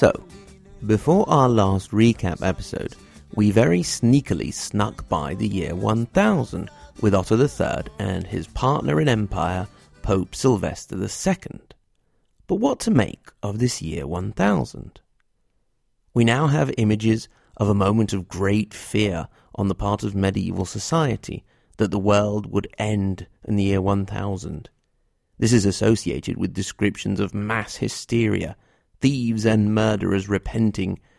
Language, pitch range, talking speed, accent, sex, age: English, 95-115 Hz, 135 wpm, British, male, 40-59